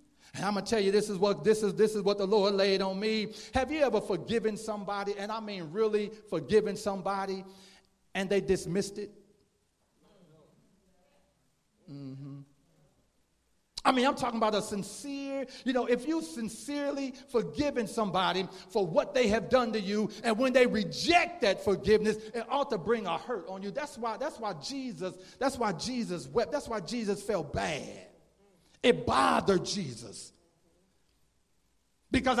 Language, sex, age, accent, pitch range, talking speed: English, male, 40-59, American, 210-280 Hz, 160 wpm